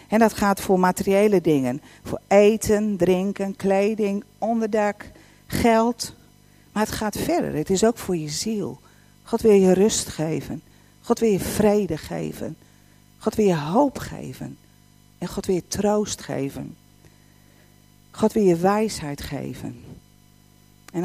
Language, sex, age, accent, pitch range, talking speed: Dutch, female, 40-59, Dutch, 175-225 Hz, 140 wpm